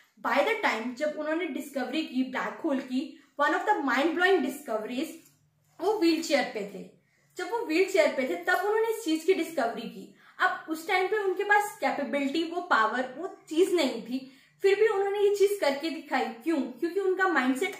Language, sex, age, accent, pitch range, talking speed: Hindi, female, 20-39, native, 275-370 Hz, 195 wpm